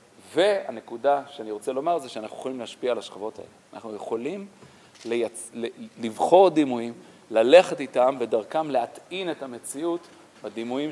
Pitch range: 120-180 Hz